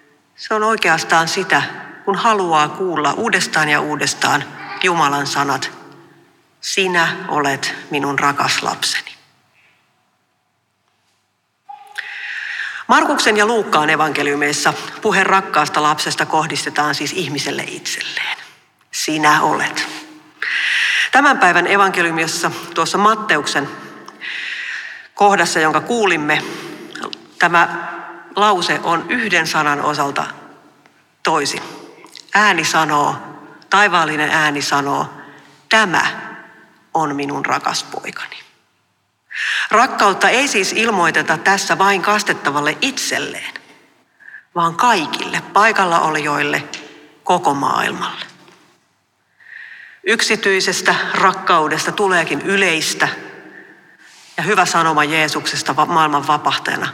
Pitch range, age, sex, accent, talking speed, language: 150-200 Hz, 40-59, female, native, 80 wpm, Finnish